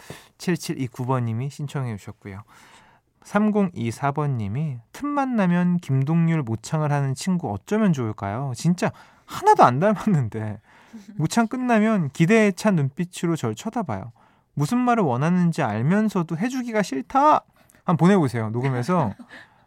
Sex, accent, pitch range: male, native, 120-180 Hz